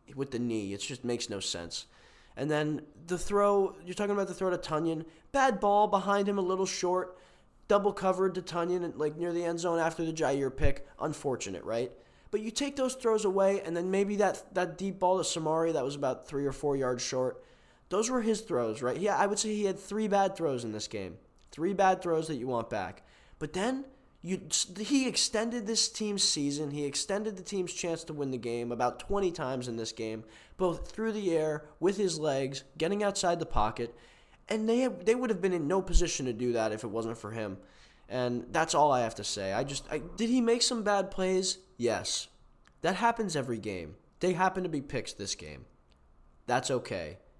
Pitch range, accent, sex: 130-195 Hz, American, male